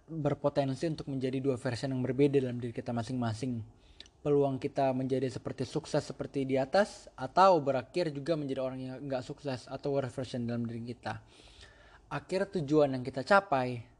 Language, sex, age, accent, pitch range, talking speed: Indonesian, male, 20-39, native, 125-150 Hz, 165 wpm